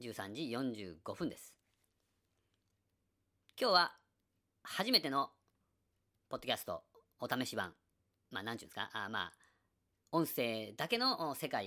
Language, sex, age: Japanese, female, 40-59